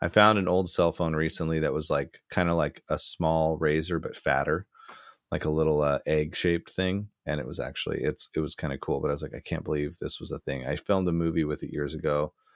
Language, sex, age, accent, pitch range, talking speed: English, male, 30-49, American, 75-90 Hz, 260 wpm